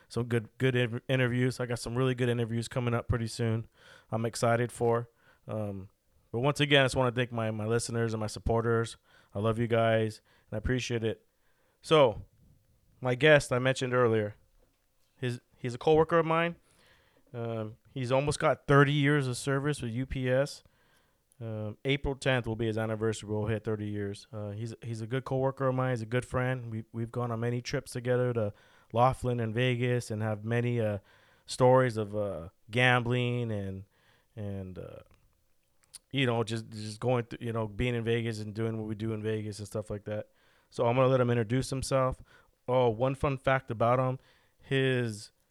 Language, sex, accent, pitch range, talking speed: English, male, American, 110-130 Hz, 190 wpm